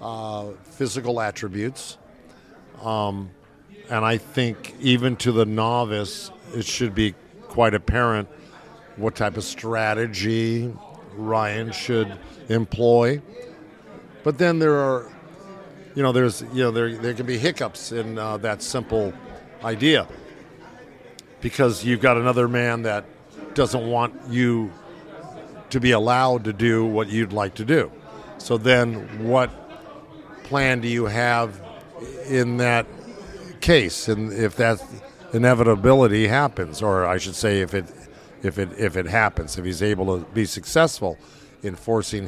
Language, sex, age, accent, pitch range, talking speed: English, male, 50-69, American, 110-130 Hz, 135 wpm